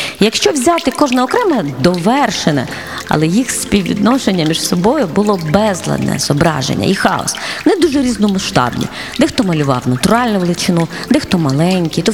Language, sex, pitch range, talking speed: Ukrainian, female, 155-250 Hz, 125 wpm